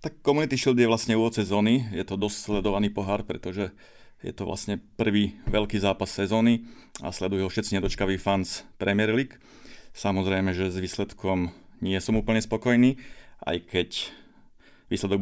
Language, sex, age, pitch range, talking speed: Slovak, male, 30-49, 100-110 Hz, 150 wpm